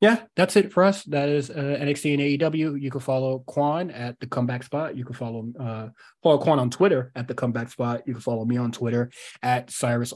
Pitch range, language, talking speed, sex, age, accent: 120-140 Hz, English, 230 wpm, male, 20-39, American